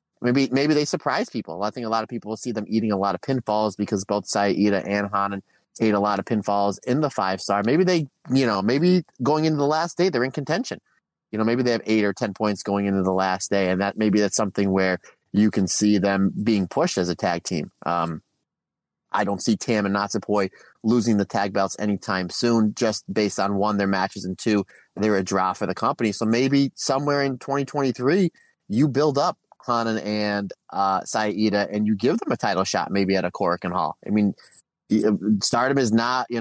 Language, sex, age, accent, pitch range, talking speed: English, male, 30-49, American, 100-120 Hz, 220 wpm